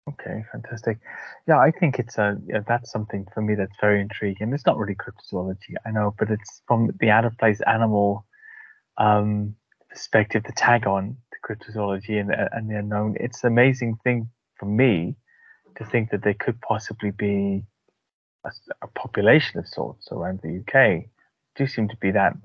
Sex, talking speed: male, 175 wpm